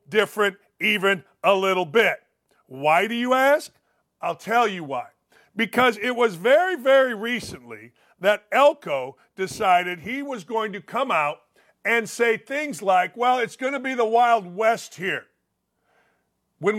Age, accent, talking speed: 50-69, American, 150 wpm